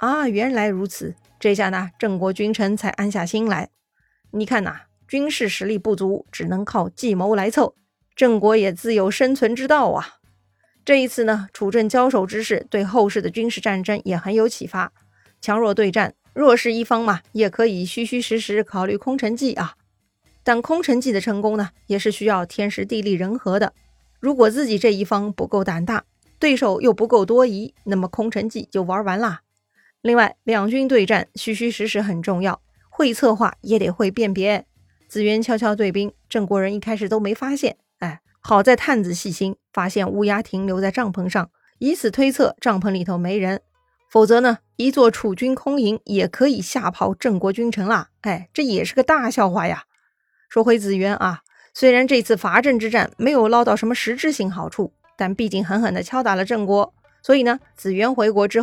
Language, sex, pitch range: Chinese, female, 200-235 Hz